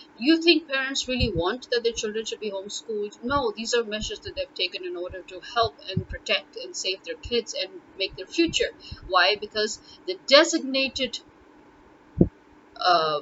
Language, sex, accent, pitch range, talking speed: English, female, Indian, 200-325 Hz, 170 wpm